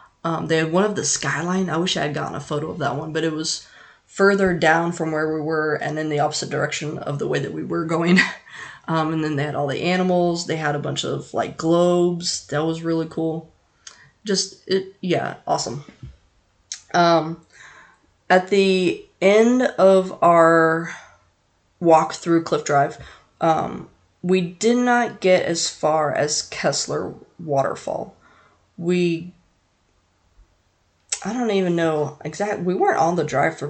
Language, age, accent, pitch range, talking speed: English, 20-39, American, 155-190 Hz, 165 wpm